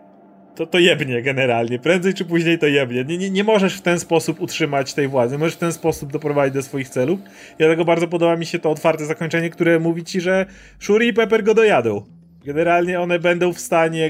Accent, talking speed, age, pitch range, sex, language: native, 210 wpm, 30-49, 140-170 Hz, male, Polish